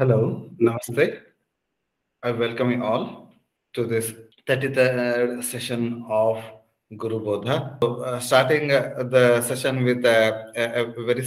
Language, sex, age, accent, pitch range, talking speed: English, male, 30-49, Indian, 120-135 Hz, 120 wpm